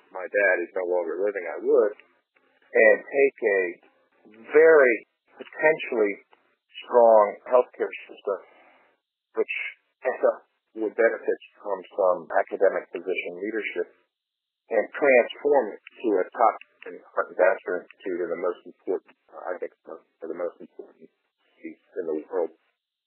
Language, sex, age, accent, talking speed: English, male, 50-69, American, 125 wpm